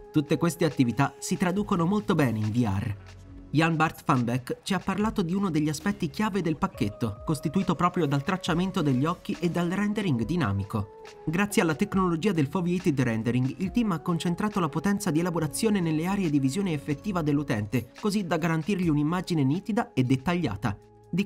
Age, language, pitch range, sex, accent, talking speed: 30-49, Italian, 140-185 Hz, male, native, 170 wpm